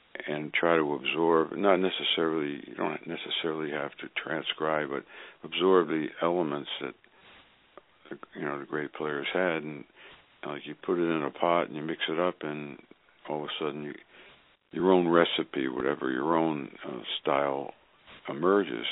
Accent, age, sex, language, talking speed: American, 60-79, male, English, 160 wpm